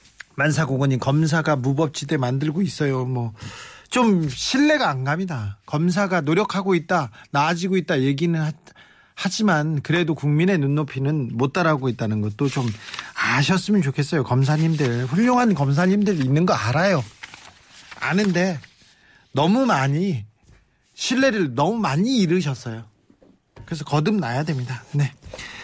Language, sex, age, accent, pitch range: Korean, male, 40-59, native, 140-185 Hz